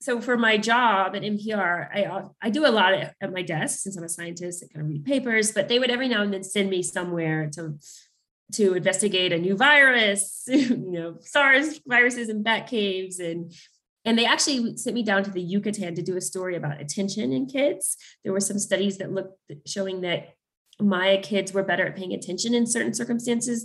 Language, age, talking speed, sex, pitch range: English, 30-49, 210 wpm, female, 180-220 Hz